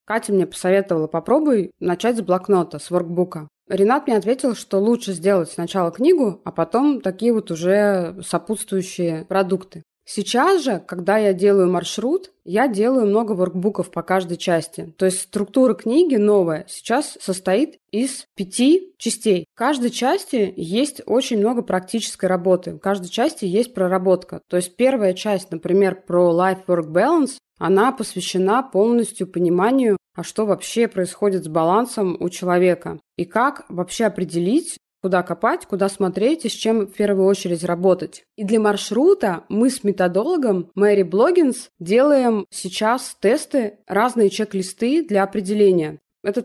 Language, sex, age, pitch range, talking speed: Russian, female, 20-39, 180-235 Hz, 145 wpm